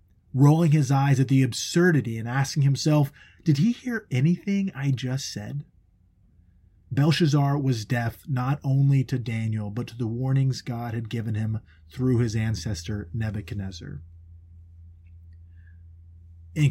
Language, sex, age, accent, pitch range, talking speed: English, male, 30-49, American, 105-140 Hz, 130 wpm